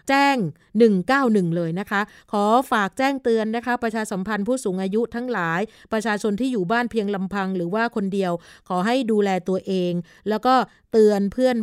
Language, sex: Thai, female